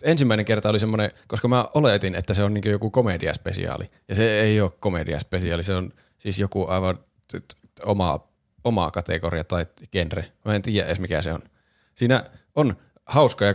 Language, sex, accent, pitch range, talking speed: Finnish, male, native, 90-105 Hz, 170 wpm